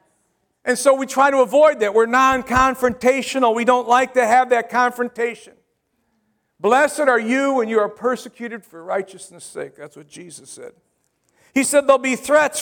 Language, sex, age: English, male, 50-69